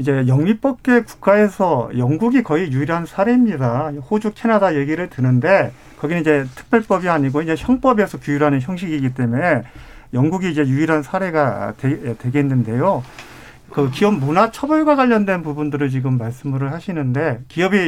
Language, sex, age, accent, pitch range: Korean, male, 50-69, native, 135-195 Hz